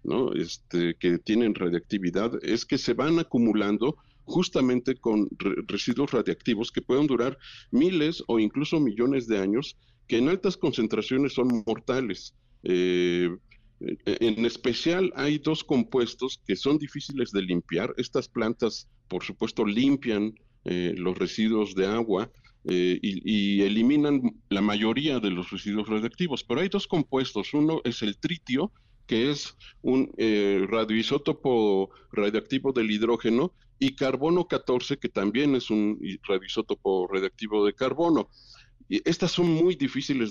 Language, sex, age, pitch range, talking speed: Spanish, male, 50-69, 105-140 Hz, 135 wpm